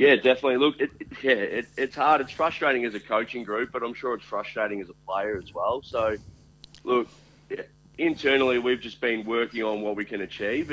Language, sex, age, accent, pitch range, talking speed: English, male, 30-49, Australian, 100-120 Hz, 215 wpm